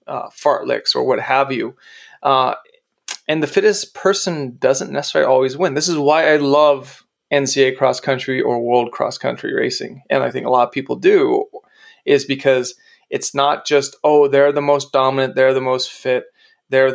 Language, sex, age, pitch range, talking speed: English, male, 20-39, 130-175 Hz, 185 wpm